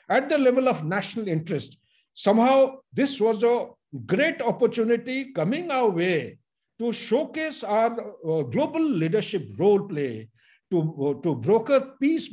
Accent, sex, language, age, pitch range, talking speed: Indian, male, English, 60-79, 160-250 Hz, 135 wpm